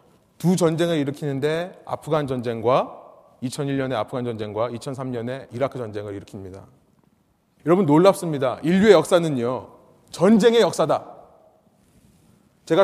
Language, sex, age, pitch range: Korean, male, 30-49, 140-220 Hz